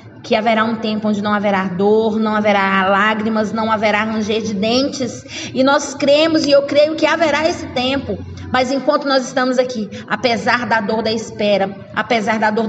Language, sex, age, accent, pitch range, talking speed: Portuguese, female, 20-39, Brazilian, 210-275 Hz, 185 wpm